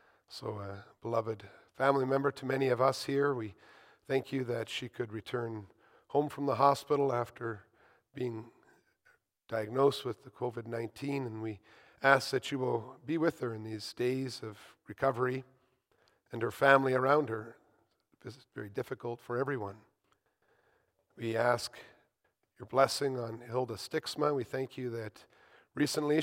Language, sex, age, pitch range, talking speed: English, male, 40-59, 120-145 Hz, 145 wpm